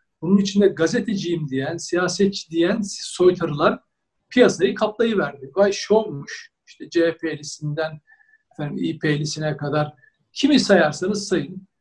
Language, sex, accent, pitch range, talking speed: Turkish, male, native, 185-240 Hz, 90 wpm